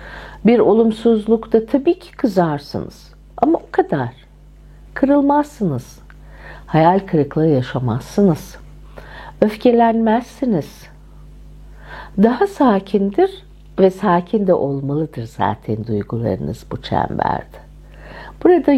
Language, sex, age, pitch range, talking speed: Turkish, female, 60-79, 170-270 Hz, 75 wpm